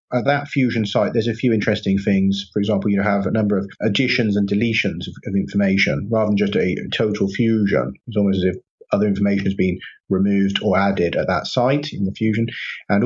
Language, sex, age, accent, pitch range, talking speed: English, male, 30-49, British, 100-120 Hz, 210 wpm